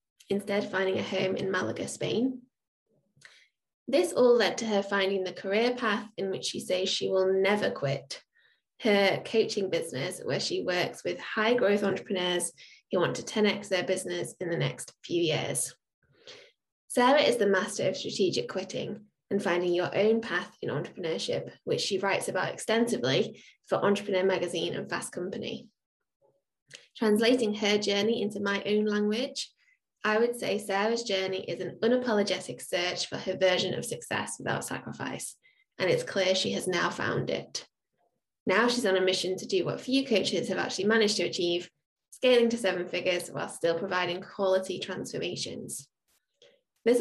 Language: English